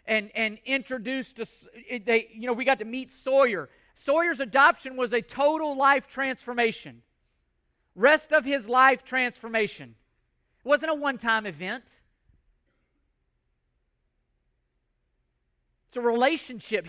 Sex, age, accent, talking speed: male, 40-59, American, 110 wpm